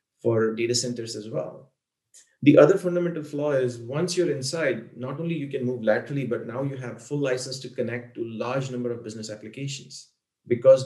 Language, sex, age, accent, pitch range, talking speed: English, male, 30-49, Indian, 115-145 Hz, 190 wpm